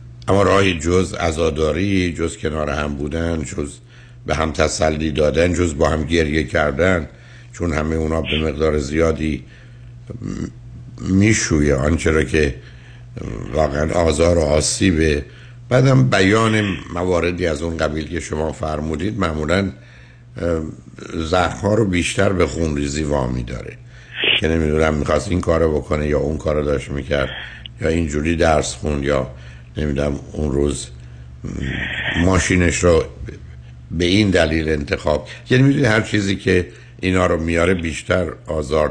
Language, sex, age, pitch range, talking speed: Persian, male, 60-79, 70-90 Hz, 130 wpm